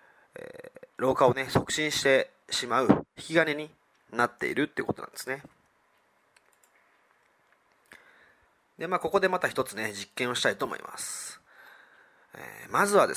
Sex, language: male, Japanese